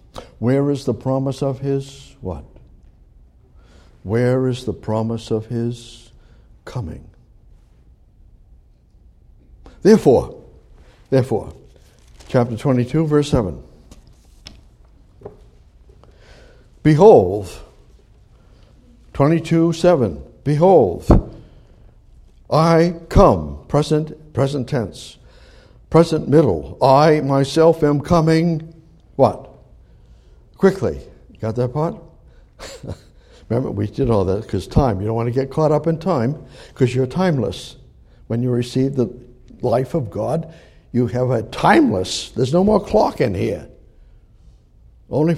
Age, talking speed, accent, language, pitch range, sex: 60-79, 105 wpm, American, English, 115-160 Hz, male